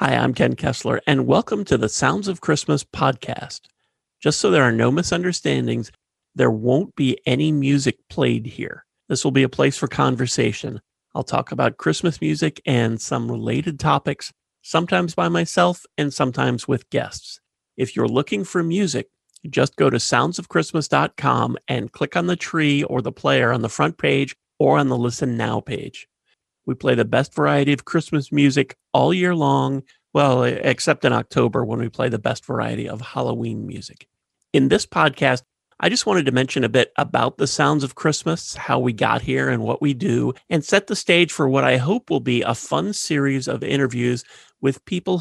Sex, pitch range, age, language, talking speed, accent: male, 125-165 Hz, 40-59, English, 185 wpm, American